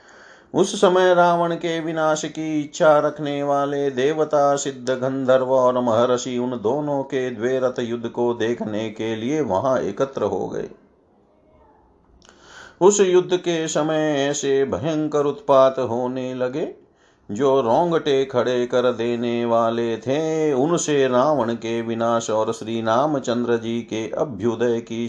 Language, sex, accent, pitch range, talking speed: Hindi, male, native, 120-160 Hz, 130 wpm